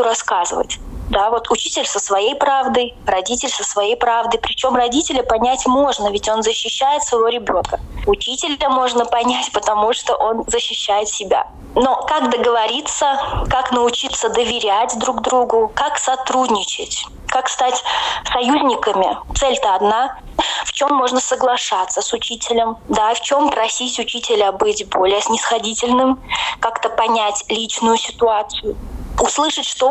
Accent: native